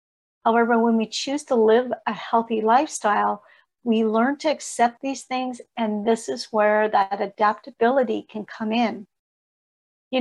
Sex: female